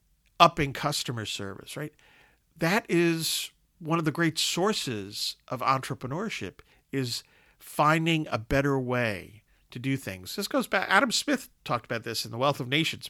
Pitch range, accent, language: 115-150 Hz, American, English